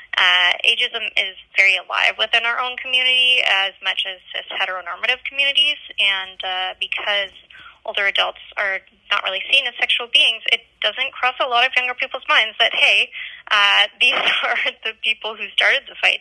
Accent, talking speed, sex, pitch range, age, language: American, 170 wpm, female, 190-250 Hz, 10-29, English